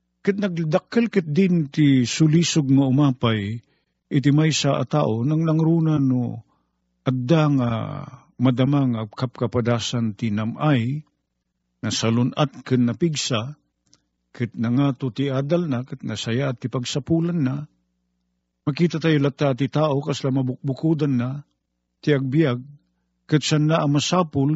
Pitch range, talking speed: 115-165 Hz, 110 wpm